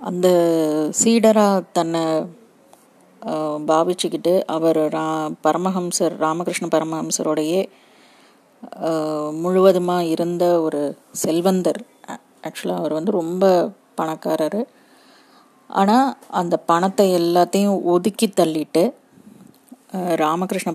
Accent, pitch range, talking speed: native, 160-195 Hz, 70 wpm